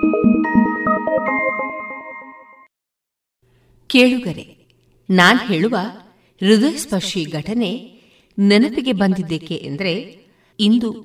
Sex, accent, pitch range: female, native, 165-235 Hz